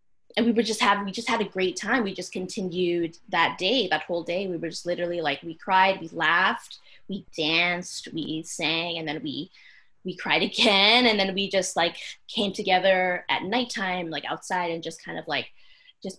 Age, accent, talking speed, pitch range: 20-39, American, 205 wpm, 165-200 Hz